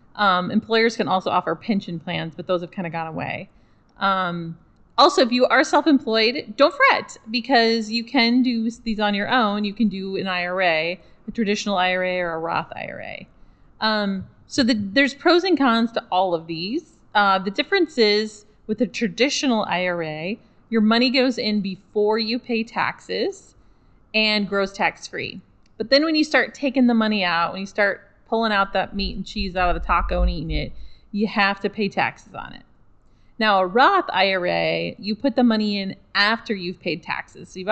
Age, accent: 30-49, American